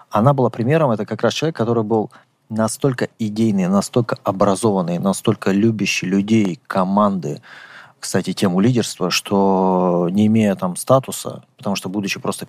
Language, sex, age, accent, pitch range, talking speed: Russian, male, 20-39, native, 100-120 Hz, 140 wpm